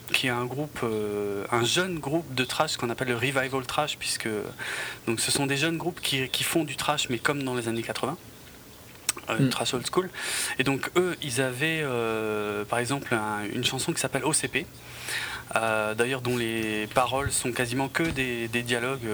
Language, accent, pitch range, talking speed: French, French, 115-145 Hz, 195 wpm